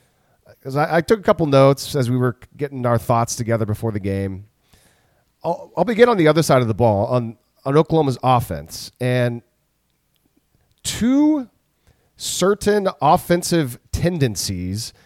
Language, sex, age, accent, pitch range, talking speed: English, male, 40-59, American, 120-155 Hz, 145 wpm